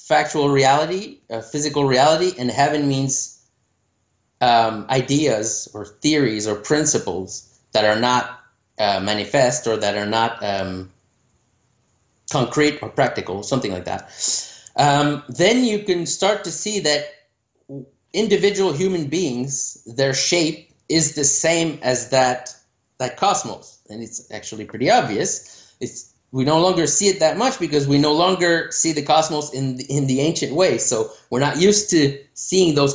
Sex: male